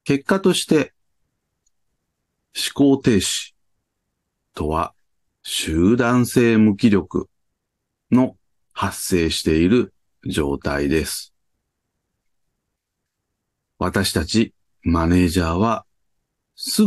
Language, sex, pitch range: Japanese, male, 90-125 Hz